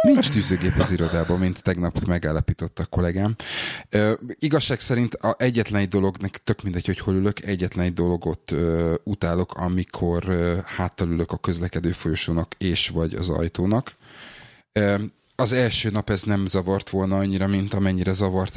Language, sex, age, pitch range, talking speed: Hungarian, male, 30-49, 90-100 Hz, 160 wpm